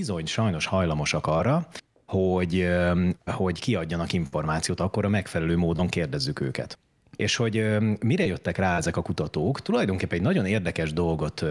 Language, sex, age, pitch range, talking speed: Hungarian, male, 30-49, 85-110 Hz, 140 wpm